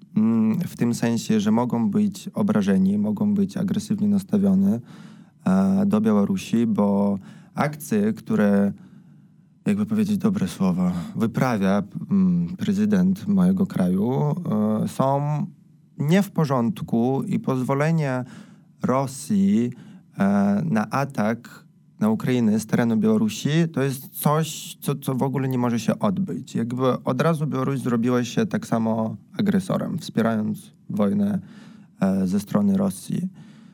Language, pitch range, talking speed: Polish, 135-210 Hz, 110 wpm